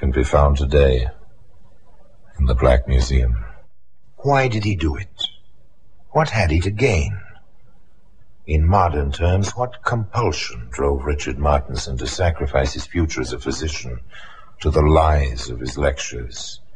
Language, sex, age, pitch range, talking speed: English, male, 60-79, 65-90 Hz, 140 wpm